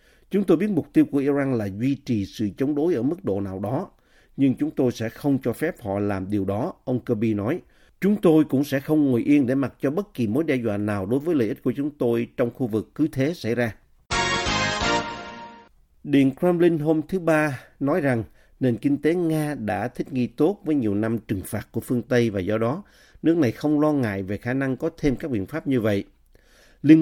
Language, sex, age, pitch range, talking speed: Vietnamese, male, 50-69, 110-145 Hz, 230 wpm